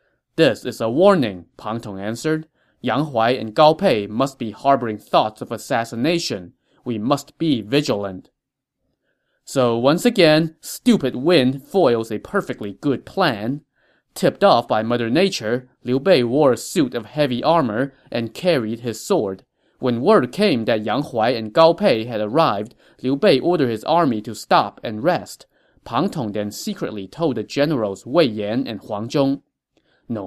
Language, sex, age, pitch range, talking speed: English, male, 20-39, 115-155 Hz, 165 wpm